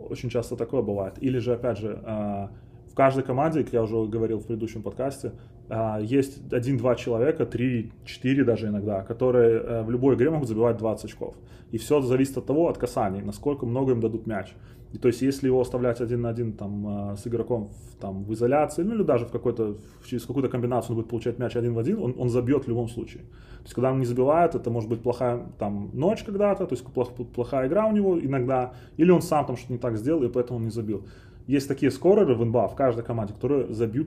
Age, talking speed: 20-39, 215 wpm